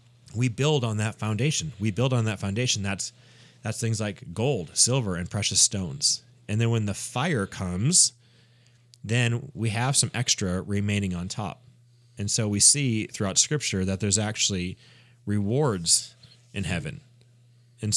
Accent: American